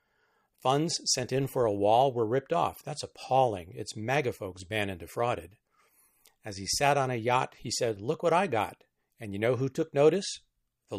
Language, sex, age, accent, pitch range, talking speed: English, male, 50-69, American, 105-140 Hz, 195 wpm